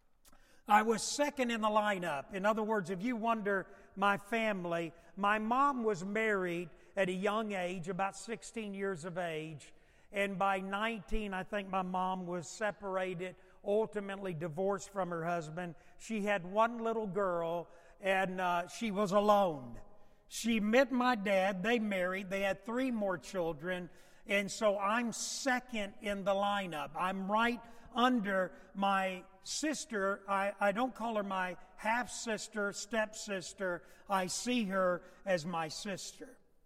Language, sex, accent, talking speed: English, male, American, 145 wpm